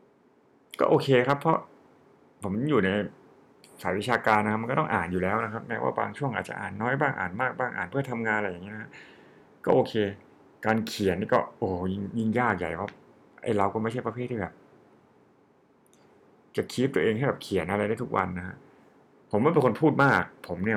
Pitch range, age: 95-120 Hz, 60-79